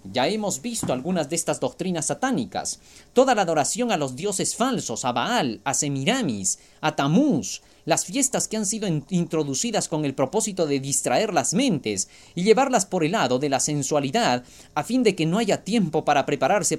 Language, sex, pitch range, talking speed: Spanish, male, 135-205 Hz, 180 wpm